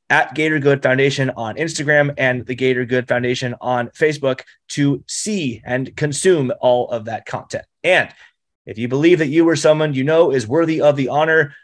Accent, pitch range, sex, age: American, 135-165 Hz, male, 30-49